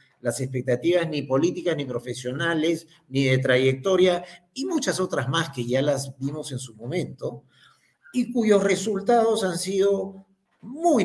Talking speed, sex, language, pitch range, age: 140 wpm, male, Spanish, 140-205 Hz, 50-69